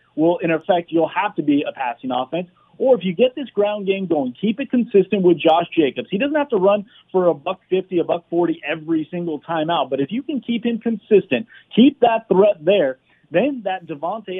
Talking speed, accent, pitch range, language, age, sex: 220 wpm, American, 150-195 Hz, English, 30-49, male